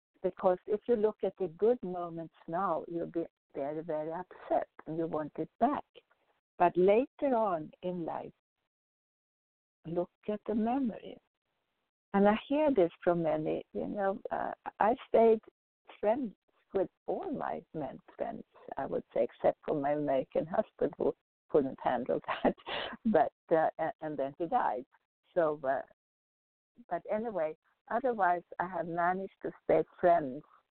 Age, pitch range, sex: 60-79, 165-230 Hz, female